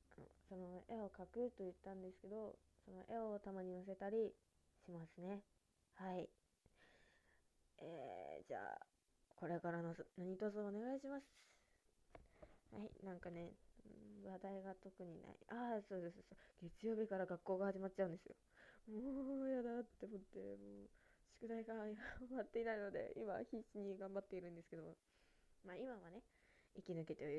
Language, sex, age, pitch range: Japanese, female, 20-39, 170-210 Hz